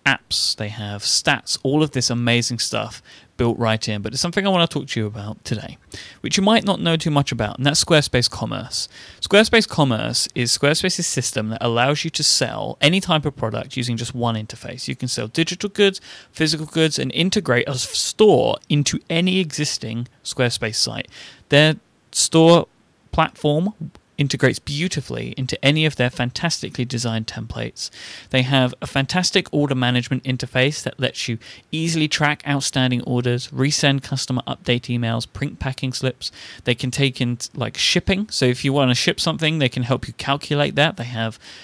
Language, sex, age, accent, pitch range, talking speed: English, male, 30-49, British, 120-150 Hz, 175 wpm